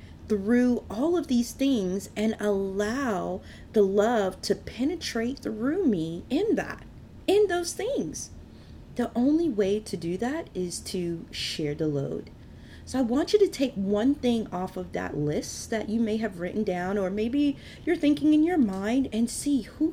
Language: English